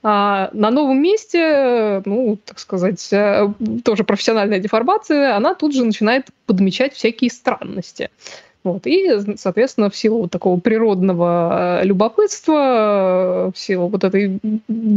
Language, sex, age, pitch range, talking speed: Russian, female, 20-39, 195-255 Hz, 120 wpm